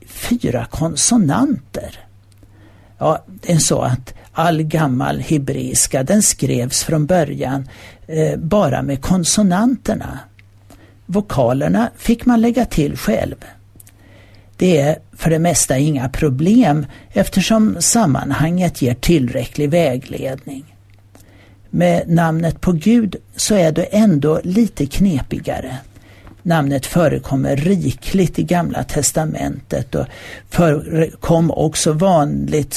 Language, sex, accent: Swedish, male, native